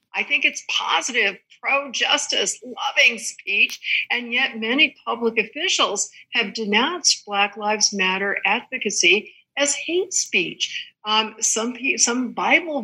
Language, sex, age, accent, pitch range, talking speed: English, female, 60-79, American, 190-265 Hz, 115 wpm